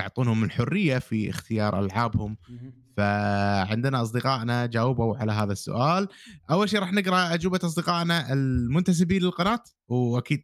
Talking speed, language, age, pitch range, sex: 115 wpm, Arabic, 30-49, 125-170 Hz, male